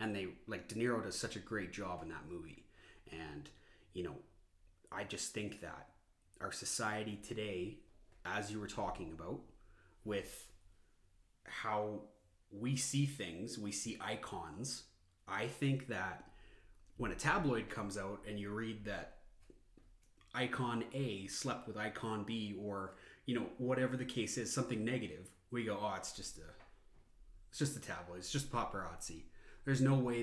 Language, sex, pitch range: English, male, 95-120 Hz